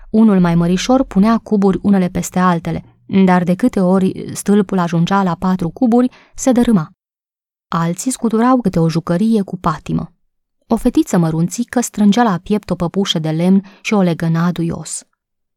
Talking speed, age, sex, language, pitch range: 155 wpm, 20-39, female, Romanian, 175-220 Hz